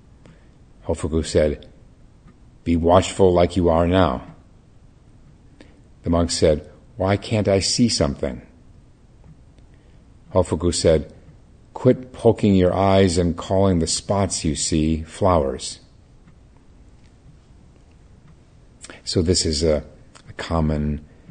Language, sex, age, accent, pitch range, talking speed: English, male, 50-69, American, 80-95 Hz, 100 wpm